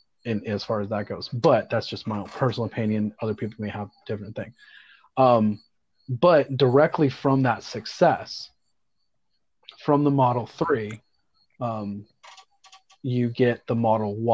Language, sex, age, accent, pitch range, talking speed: English, male, 30-49, American, 110-130 Hz, 140 wpm